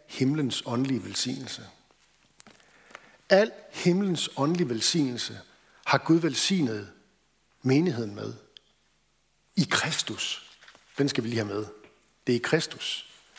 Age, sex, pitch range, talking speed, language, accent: 60-79, male, 120-170 Hz, 110 wpm, Danish, native